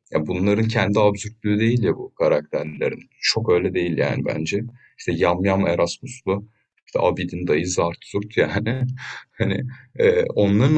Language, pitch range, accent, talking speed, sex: Turkish, 95-125 Hz, native, 140 wpm, male